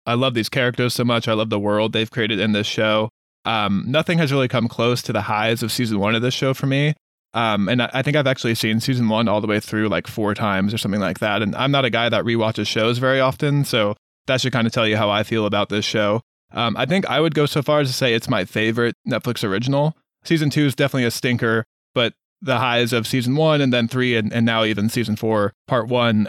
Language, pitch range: English, 110-130 Hz